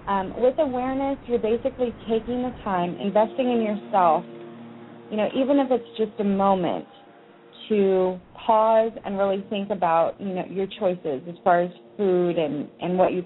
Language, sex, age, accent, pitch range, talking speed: English, female, 30-49, American, 180-225 Hz, 170 wpm